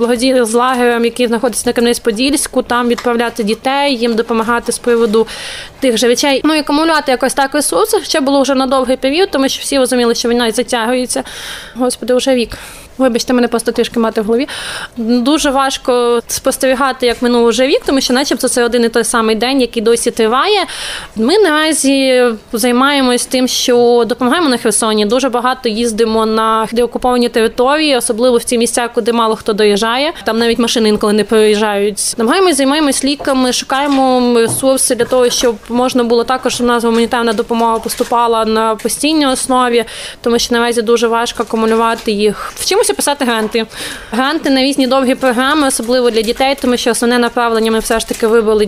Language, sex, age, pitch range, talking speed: Ukrainian, female, 20-39, 235-270 Hz, 170 wpm